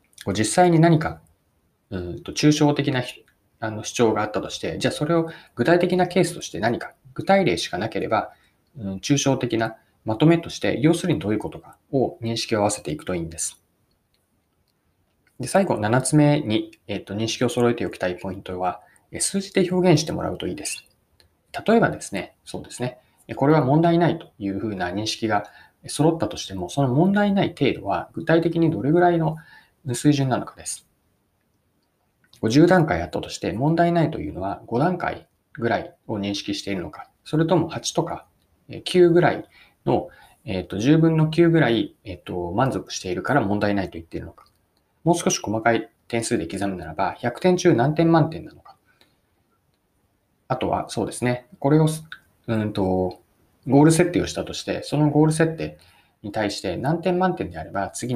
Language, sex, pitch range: Japanese, male, 100-165 Hz